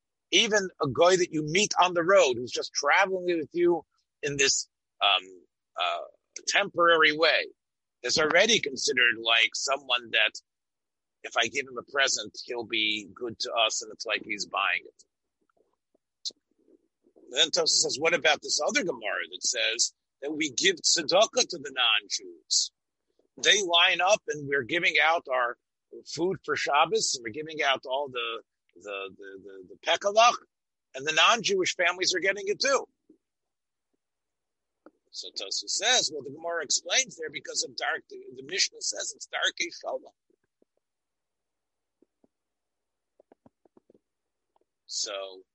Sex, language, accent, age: male, English, American, 50-69